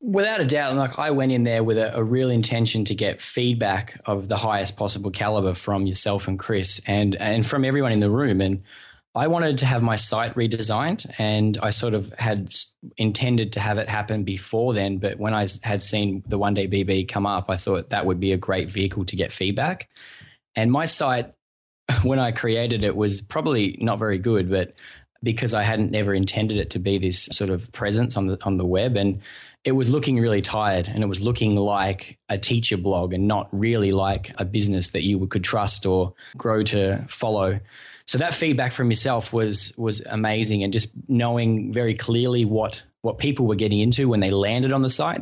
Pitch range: 100-120 Hz